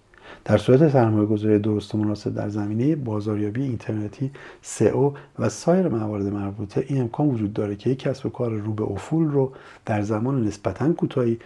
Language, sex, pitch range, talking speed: Persian, male, 105-145 Hz, 170 wpm